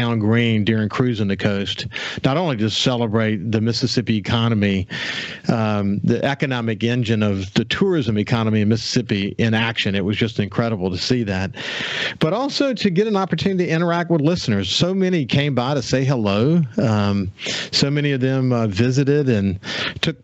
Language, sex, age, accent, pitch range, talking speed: English, male, 50-69, American, 110-140 Hz, 170 wpm